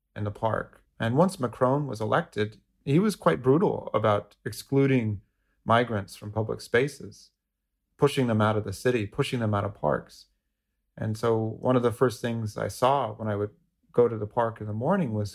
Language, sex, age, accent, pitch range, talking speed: English, male, 30-49, American, 105-120 Hz, 190 wpm